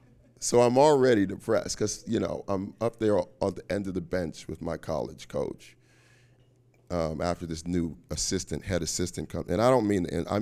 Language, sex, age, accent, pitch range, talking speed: English, male, 30-49, American, 85-120 Hz, 205 wpm